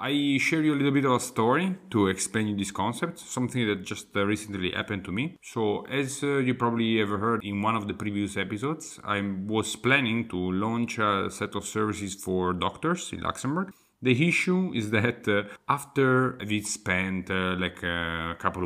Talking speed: 185 wpm